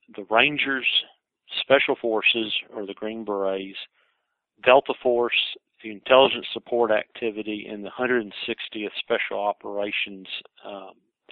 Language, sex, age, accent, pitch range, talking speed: English, male, 50-69, American, 100-115 Hz, 105 wpm